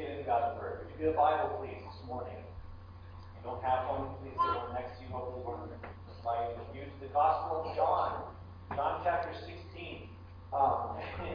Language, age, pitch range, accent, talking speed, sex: English, 40-59, 90-100 Hz, American, 175 wpm, male